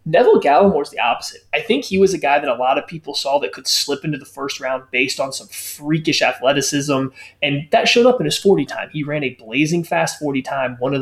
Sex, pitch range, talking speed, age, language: male, 135-175 Hz, 250 wpm, 20-39, English